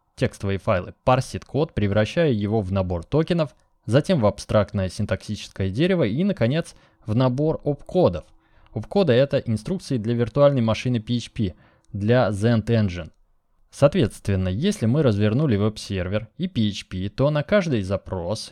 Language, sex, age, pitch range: Russian, male, 20-39, 105-145 Hz